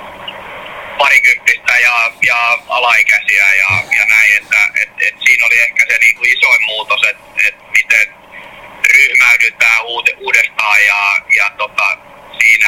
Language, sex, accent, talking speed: Finnish, male, native, 130 wpm